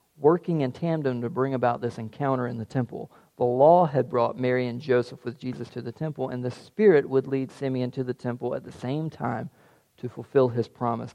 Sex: male